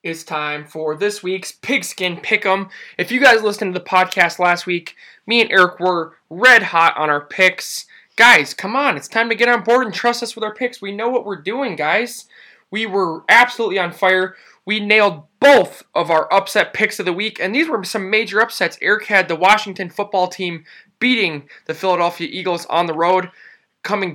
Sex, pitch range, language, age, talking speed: male, 170-205 Hz, English, 20-39, 200 wpm